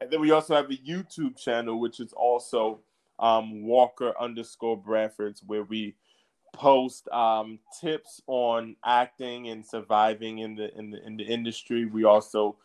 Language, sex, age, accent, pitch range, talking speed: English, male, 20-39, American, 110-135 Hz, 155 wpm